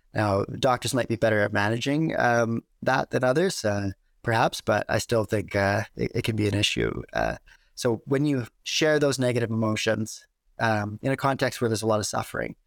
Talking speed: 200 wpm